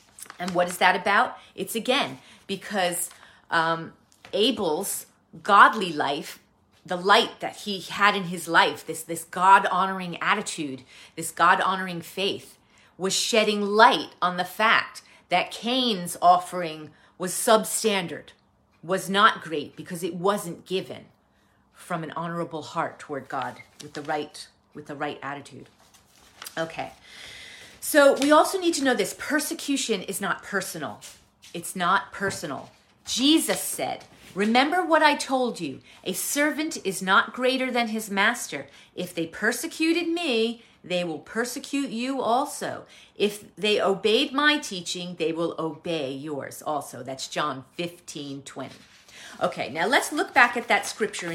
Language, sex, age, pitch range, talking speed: English, female, 30-49, 170-230 Hz, 140 wpm